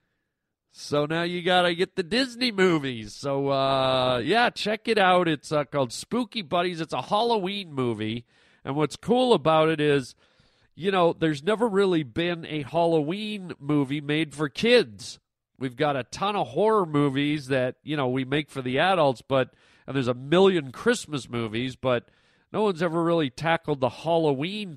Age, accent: 40-59, American